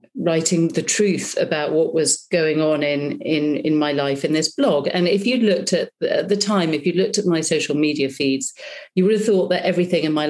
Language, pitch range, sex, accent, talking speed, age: English, 150-180 Hz, female, British, 235 wpm, 40-59